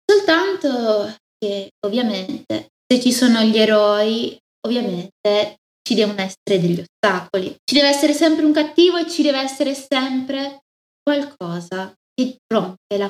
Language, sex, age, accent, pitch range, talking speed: Italian, female, 20-39, native, 200-280 Hz, 135 wpm